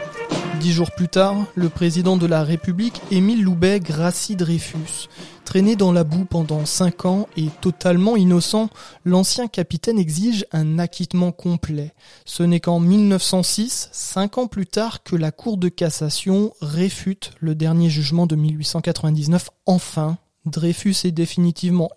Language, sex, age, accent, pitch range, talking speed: French, male, 20-39, French, 165-190 Hz, 140 wpm